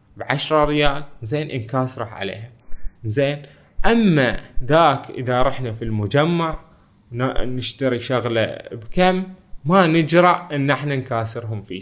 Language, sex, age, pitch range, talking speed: Arabic, male, 20-39, 115-175 Hz, 105 wpm